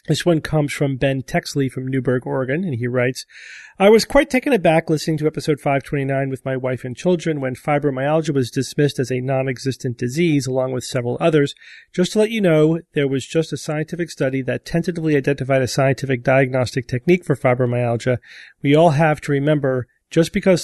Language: English